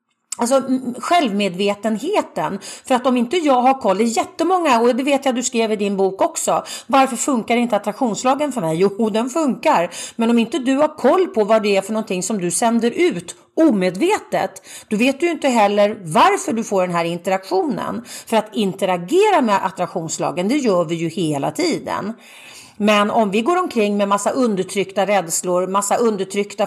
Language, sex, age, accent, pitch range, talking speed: Swedish, female, 40-59, native, 195-265 Hz, 180 wpm